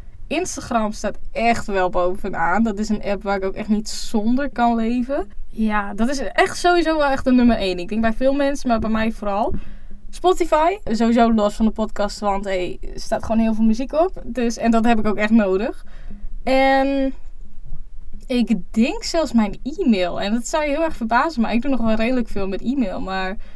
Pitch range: 205-265 Hz